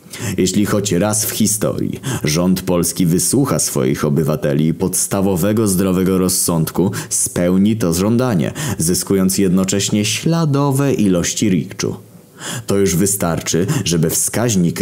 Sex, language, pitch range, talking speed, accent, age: male, Polish, 90-135 Hz, 105 wpm, native, 20-39